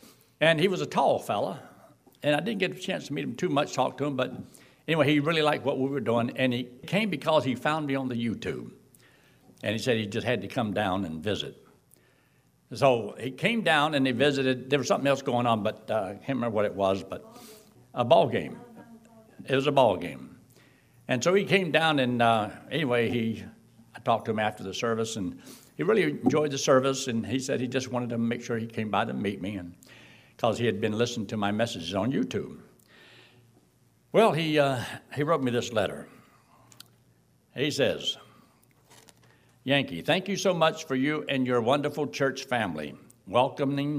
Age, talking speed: 60-79, 205 wpm